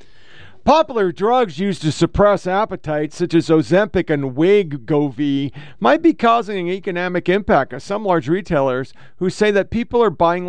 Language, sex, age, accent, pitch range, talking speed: English, male, 50-69, American, 140-200 Hz, 155 wpm